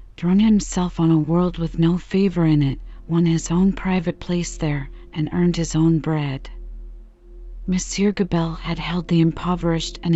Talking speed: 165 wpm